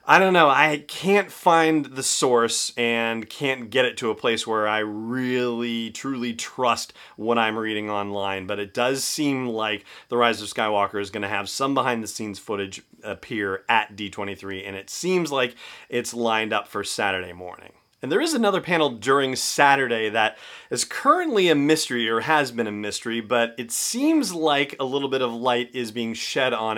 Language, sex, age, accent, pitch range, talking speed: English, male, 30-49, American, 110-145 Hz, 185 wpm